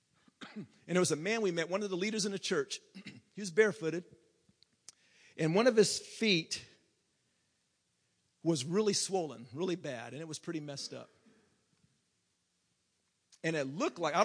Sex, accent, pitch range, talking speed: male, American, 145-195 Hz, 160 wpm